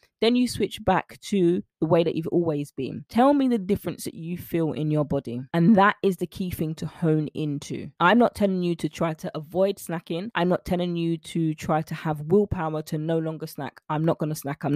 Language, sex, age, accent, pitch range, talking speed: English, female, 20-39, British, 160-220 Hz, 235 wpm